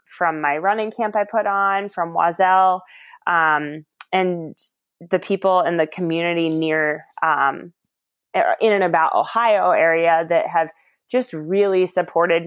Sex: female